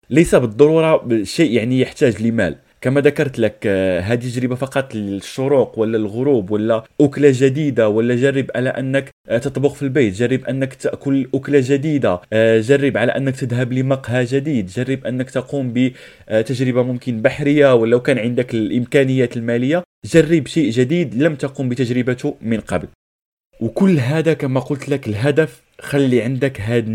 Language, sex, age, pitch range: Arabic, male, 20-39, 115-140 Hz